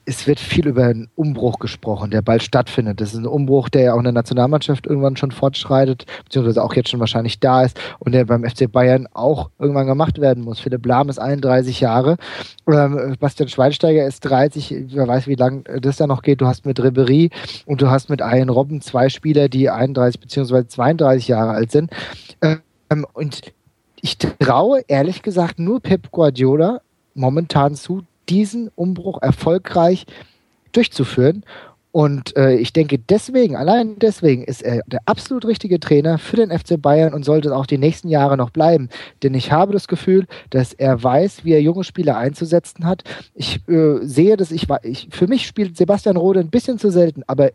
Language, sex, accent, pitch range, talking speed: German, male, German, 130-165 Hz, 185 wpm